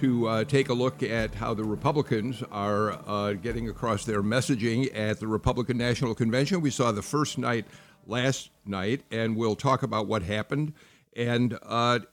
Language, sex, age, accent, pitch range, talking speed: English, male, 50-69, American, 115-145 Hz, 175 wpm